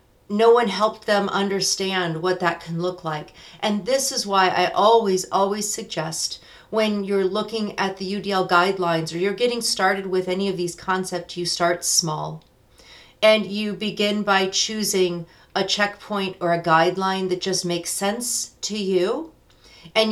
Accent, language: American, English